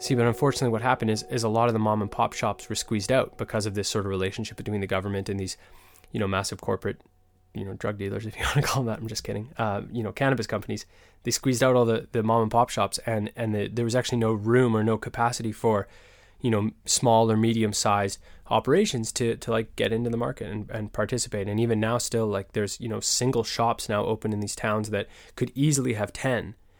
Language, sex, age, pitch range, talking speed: English, male, 20-39, 100-115 Hz, 250 wpm